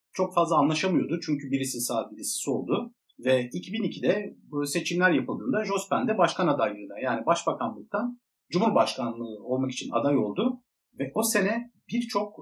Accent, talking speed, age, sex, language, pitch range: native, 135 wpm, 50-69, male, Turkish, 125-190 Hz